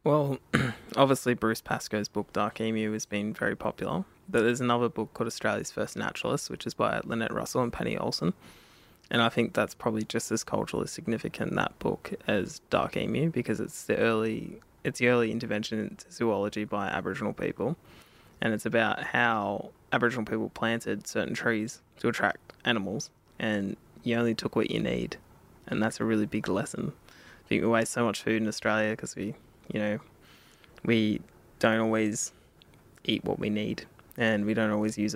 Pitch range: 105-115 Hz